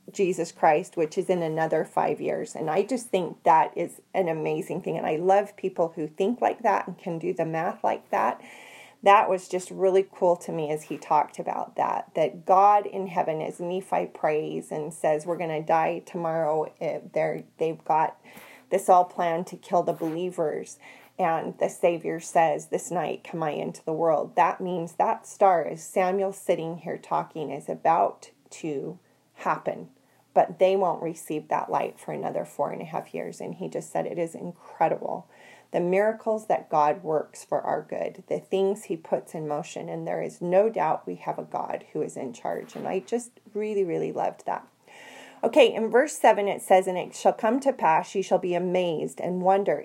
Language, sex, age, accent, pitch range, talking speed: English, female, 30-49, American, 170-200 Hz, 195 wpm